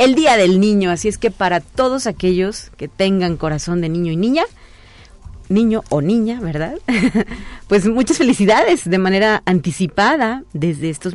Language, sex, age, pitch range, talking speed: Spanish, female, 40-59, 165-220 Hz, 160 wpm